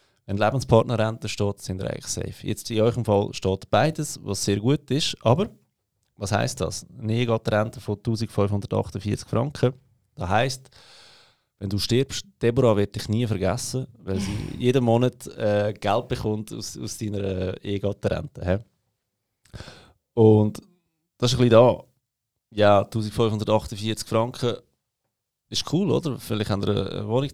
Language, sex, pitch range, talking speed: German, male, 100-125 Hz, 145 wpm